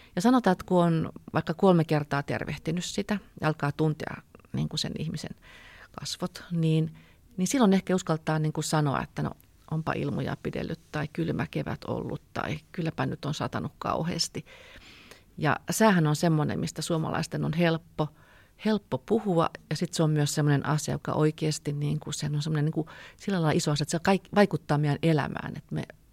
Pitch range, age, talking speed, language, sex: 150-180 Hz, 40-59, 170 wpm, Finnish, female